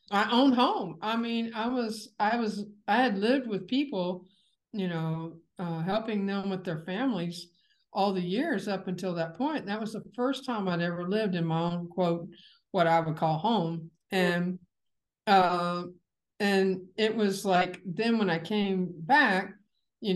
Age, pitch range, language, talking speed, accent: 60-79, 180-225 Hz, English, 175 wpm, American